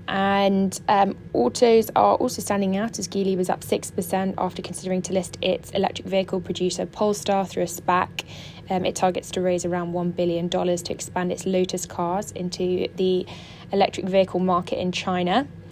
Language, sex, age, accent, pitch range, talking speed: English, female, 20-39, British, 180-200 Hz, 170 wpm